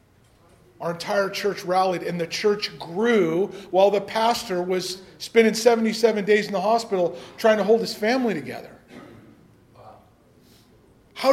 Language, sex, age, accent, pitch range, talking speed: English, male, 40-59, American, 185-230 Hz, 130 wpm